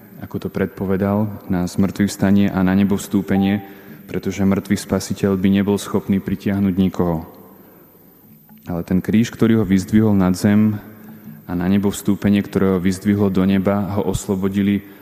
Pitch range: 95-100 Hz